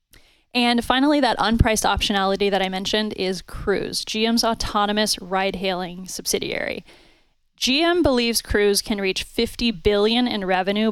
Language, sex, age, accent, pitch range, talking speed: English, female, 10-29, American, 190-230 Hz, 130 wpm